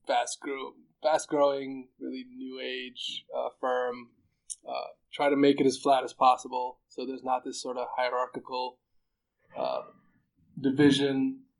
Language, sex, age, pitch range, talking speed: English, male, 20-39, 120-135 Hz, 115 wpm